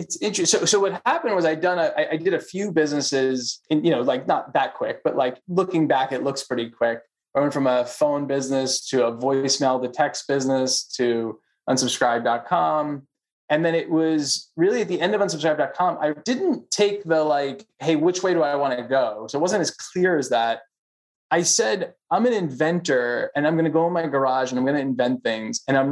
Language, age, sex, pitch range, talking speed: English, 20-39, male, 135-170 Hz, 215 wpm